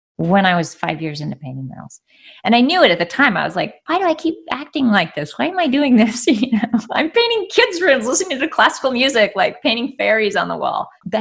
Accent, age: American, 20-39